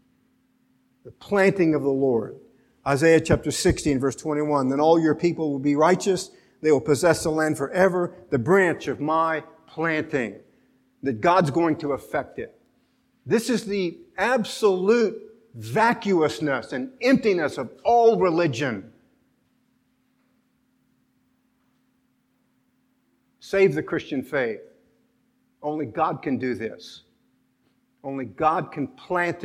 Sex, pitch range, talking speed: male, 145-220 Hz, 115 wpm